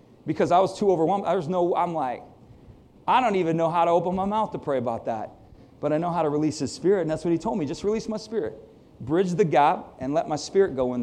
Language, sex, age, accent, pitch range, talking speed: English, male, 40-59, American, 115-160 Hz, 255 wpm